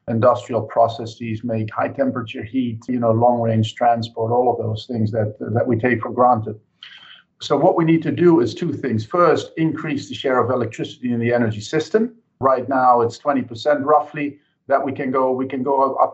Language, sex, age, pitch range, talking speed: English, male, 50-69, 120-145 Hz, 195 wpm